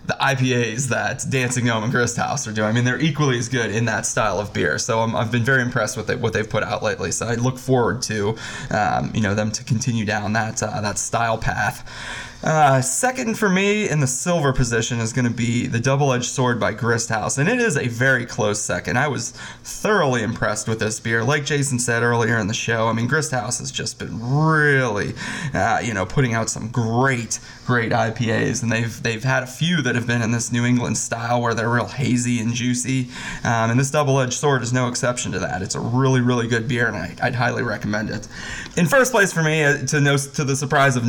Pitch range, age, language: 115-130 Hz, 20-39, English